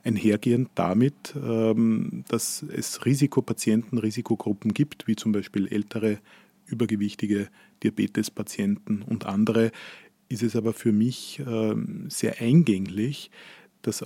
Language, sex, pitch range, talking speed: German, male, 105-125 Hz, 100 wpm